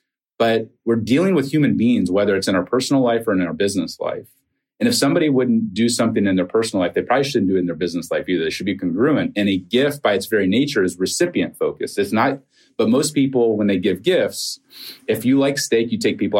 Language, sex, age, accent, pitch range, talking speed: English, male, 30-49, American, 105-150 Hz, 245 wpm